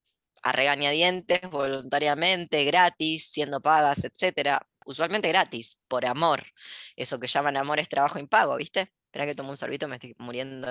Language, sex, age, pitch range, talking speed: Spanish, female, 20-39, 140-185 Hz, 150 wpm